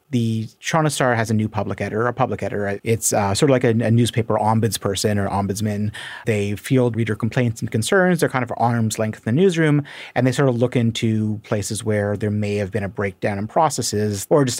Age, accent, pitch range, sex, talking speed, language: 30-49, American, 105-130 Hz, male, 220 wpm, English